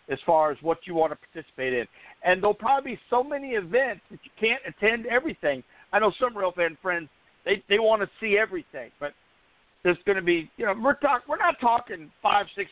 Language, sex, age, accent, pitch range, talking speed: English, male, 50-69, American, 155-215 Hz, 220 wpm